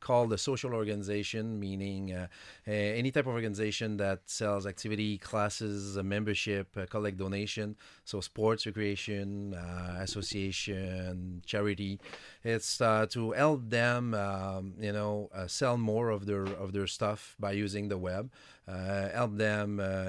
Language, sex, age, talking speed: English, male, 30-49, 145 wpm